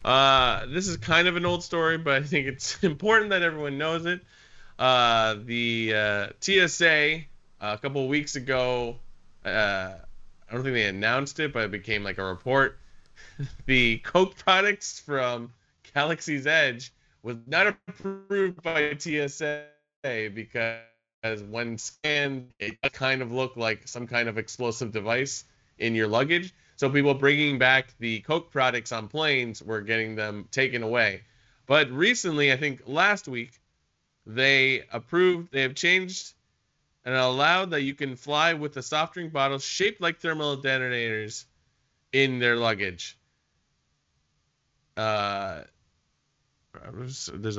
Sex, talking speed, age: male, 140 wpm, 20-39